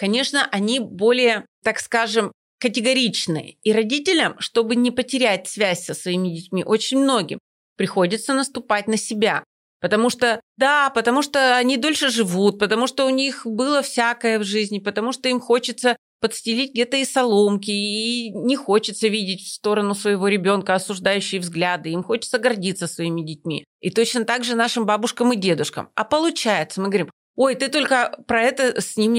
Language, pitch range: Russian, 200-250 Hz